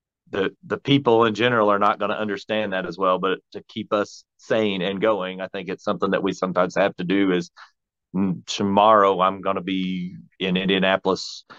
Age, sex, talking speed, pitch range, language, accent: 40-59, male, 195 wpm, 95-110 Hz, English, American